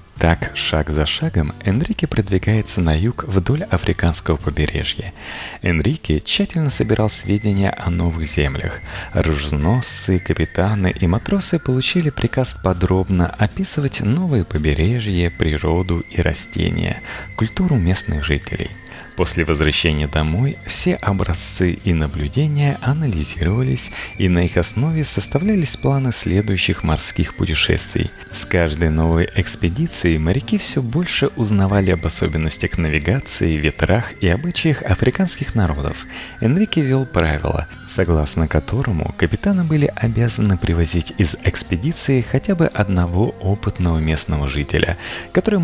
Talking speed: 110 wpm